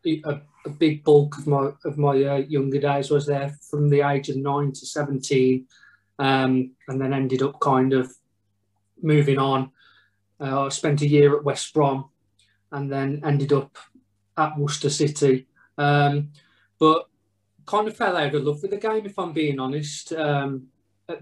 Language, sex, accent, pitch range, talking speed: English, male, British, 135-150 Hz, 175 wpm